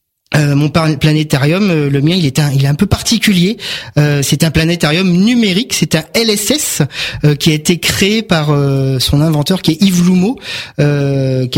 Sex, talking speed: male, 185 wpm